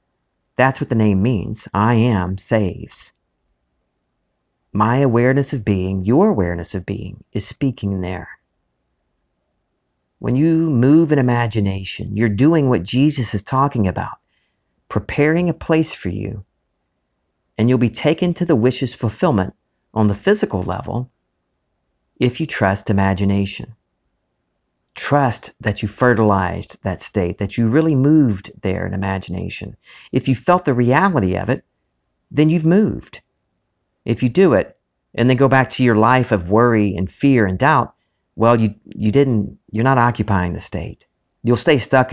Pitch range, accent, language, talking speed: 95-130 Hz, American, English, 150 wpm